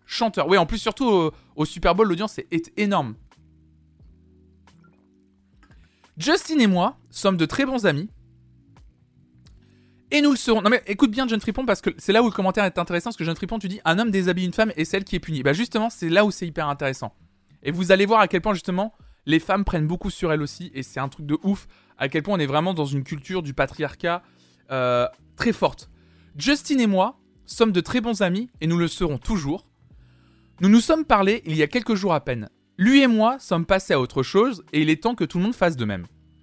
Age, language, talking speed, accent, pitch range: 20-39, French, 235 wpm, French, 135-210 Hz